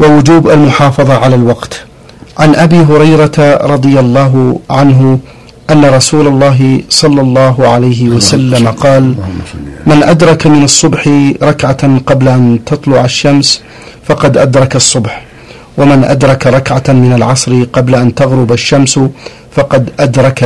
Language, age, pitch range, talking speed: Arabic, 50-69, 125-140 Hz, 120 wpm